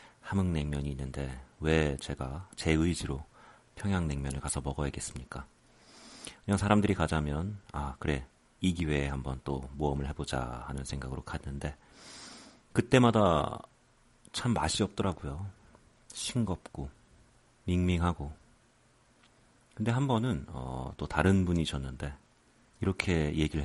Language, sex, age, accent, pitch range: Korean, male, 40-59, native, 70-100 Hz